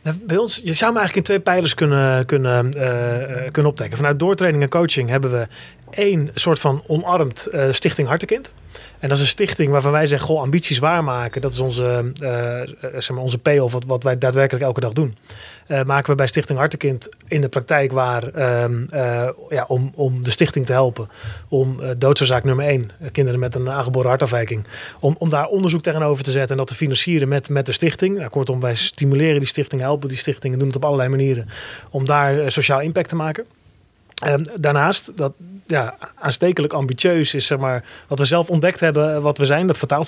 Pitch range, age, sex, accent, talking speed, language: 130-160 Hz, 30-49, male, Dutch, 205 wpm, Dutch